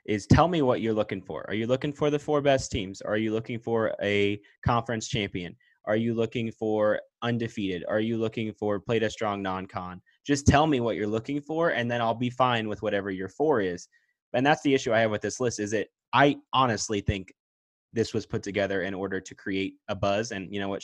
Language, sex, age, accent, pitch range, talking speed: English, male, 20-39, American, 95-125 Hz, 235 wpm